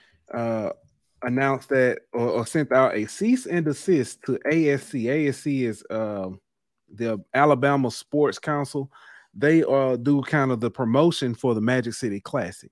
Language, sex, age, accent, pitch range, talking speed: English, male, 30-49, American, 115-145 Hz, 150 wpm